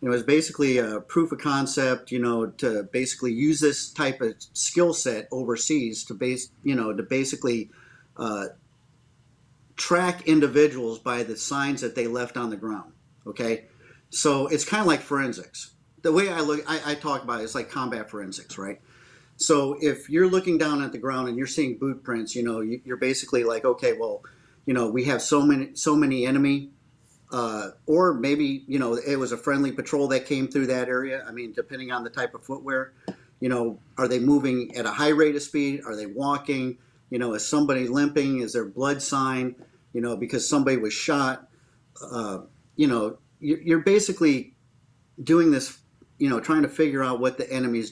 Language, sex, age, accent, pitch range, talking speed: English, male, 50-69, American, 120-145 Hz, 195 wpm